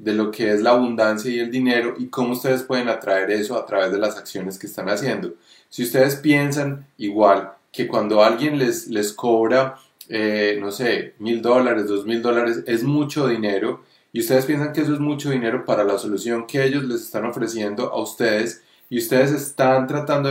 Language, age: Spanish, 30-49